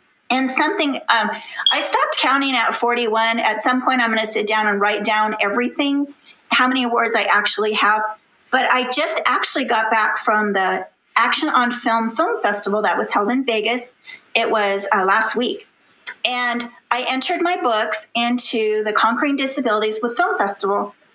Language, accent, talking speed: English, American, 175 wpm